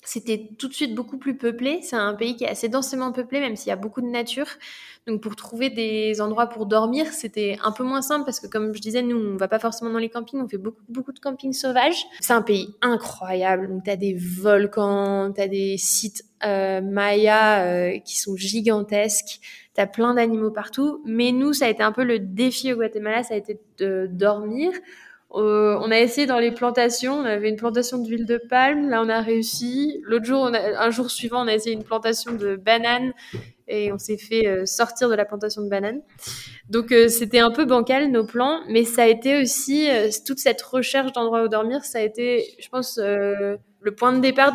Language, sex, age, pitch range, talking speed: French, female, 20-39, 210-255 Hz, 225 wpm